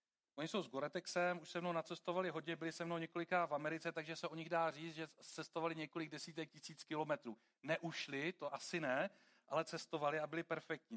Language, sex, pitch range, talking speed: Czech, male, 150-175 Hz, 195 wpm